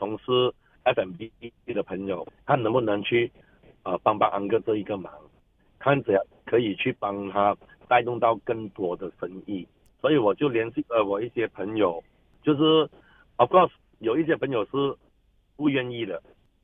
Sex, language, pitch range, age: male, Chinese, 105-150 Hz, 60-79